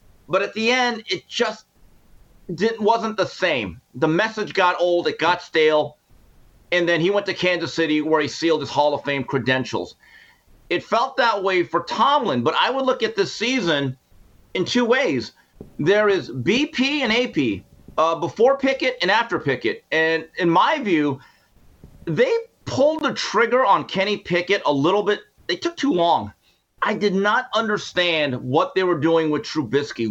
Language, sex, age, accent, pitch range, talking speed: English, male, 40-59, American, 155-230 Hz, 170 wpm